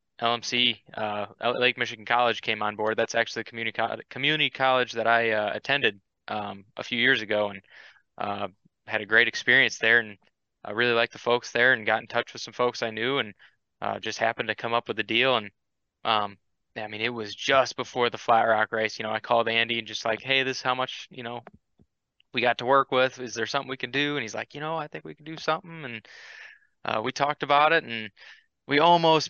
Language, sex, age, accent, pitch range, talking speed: English, male, 20-39, American, 110-125 Hz, 235 wpm